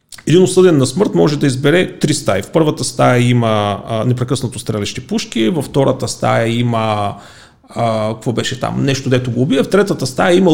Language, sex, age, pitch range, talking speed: Bulgarian, male, 40-59, 120-170 Hz, 180 wpm